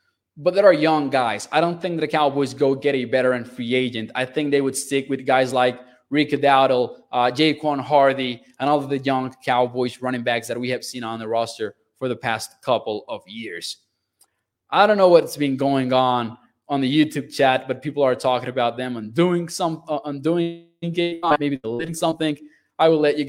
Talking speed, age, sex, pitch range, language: 205 wpm, 20-39, male, 125-160 Hz, English